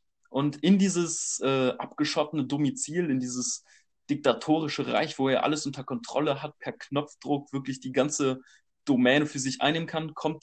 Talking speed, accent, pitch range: 155 wpm, German, 125-155 Hz